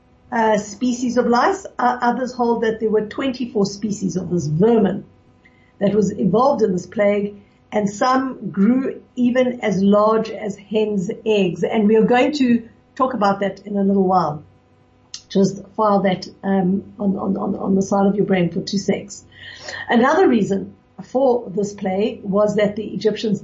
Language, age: English, 60-79